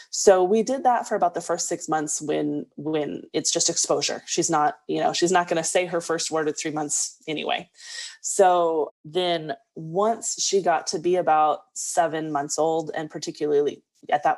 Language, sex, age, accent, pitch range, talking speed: English, female, 20-39, American, 155-210 Hz, 190 wpm